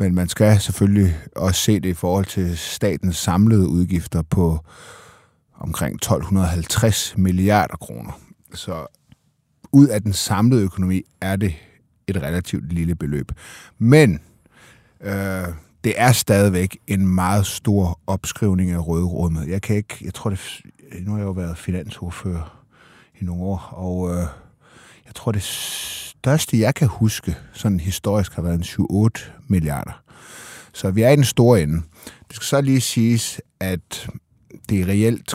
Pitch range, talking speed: 85-110 Hz, 150 wpm